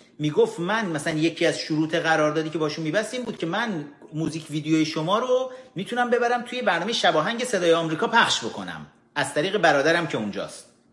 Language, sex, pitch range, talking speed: Persian, male, 145-225 Hz, 170 wpm